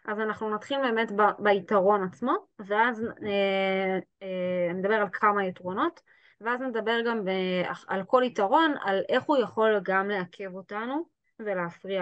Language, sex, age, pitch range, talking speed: Hebrew, female, 20-39, 190-265 Hz, 150 wpm